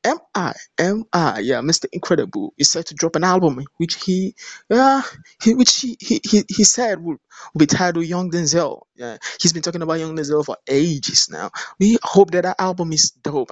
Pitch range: 155-210 Hz